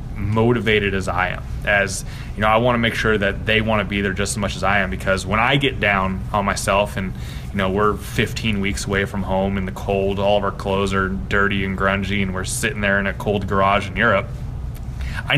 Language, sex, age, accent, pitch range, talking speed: English, male, 20-39, American, 100-115 Hz, 240 wpm